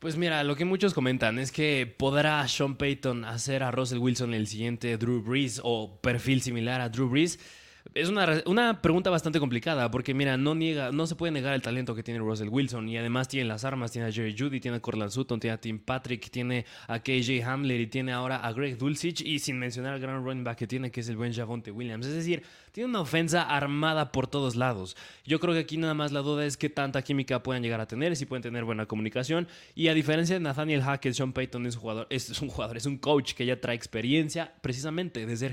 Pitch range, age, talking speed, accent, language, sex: 120-150 Hz, 20-39, 240 wpm, Mexican, Spanish, male